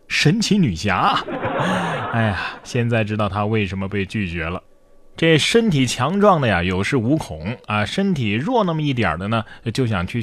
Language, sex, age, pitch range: Chinese, male, 20-39, 105-155 Hz